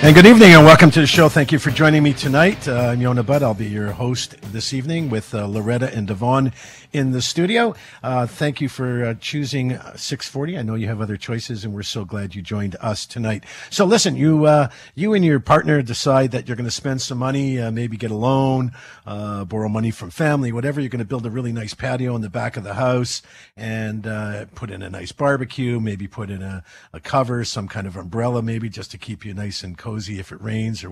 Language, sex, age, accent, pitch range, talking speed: English, male, 50-69, American, 110-145 Hz, 240 wpm